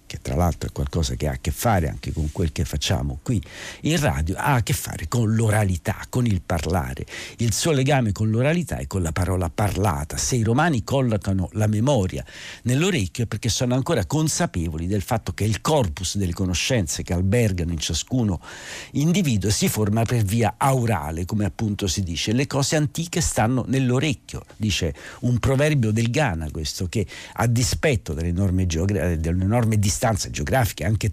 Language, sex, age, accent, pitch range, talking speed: Italian, male, 60-79, native, 90-125 Hz, 170 wpm